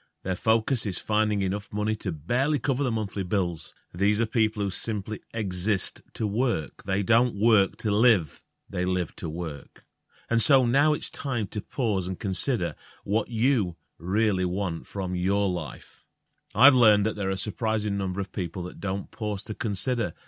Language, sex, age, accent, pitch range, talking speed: English, male, 30-49, British, 95-125 Hz, 180 wpm